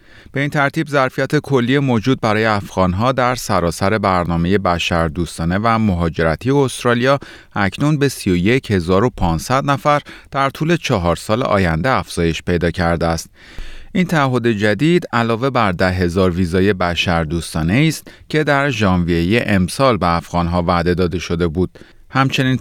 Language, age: Persian, 30-49